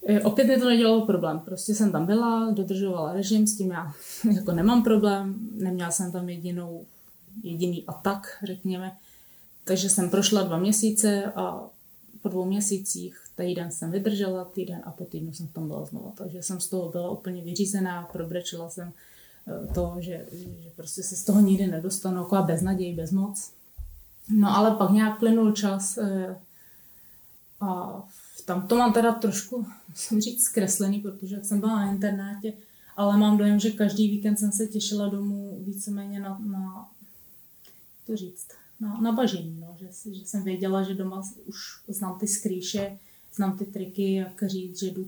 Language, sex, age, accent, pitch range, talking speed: Czech, female, 20-39, native, 180-205 Hz, 165 wpm